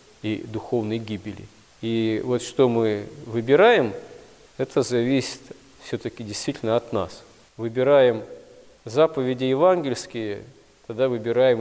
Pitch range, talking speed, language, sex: 110-135 Hz, 100 wpm, Russian, male